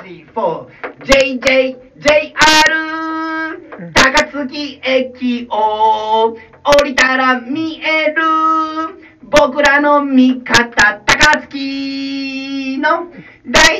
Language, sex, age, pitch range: Japanese, male, 40-59, 260-315 Hz